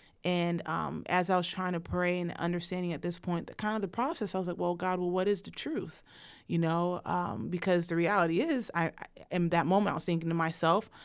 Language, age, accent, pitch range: English, 30-49, American, 170-195 Hz